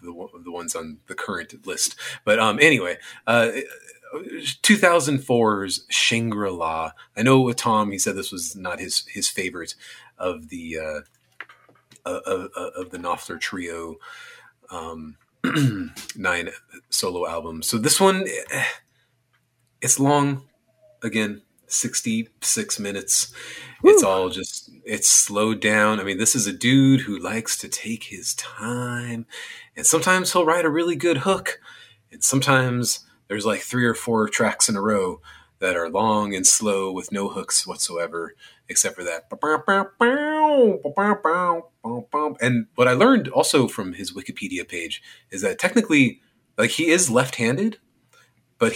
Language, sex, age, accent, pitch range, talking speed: English, male, 30-49, American, 105-165 Hz, 140 wpm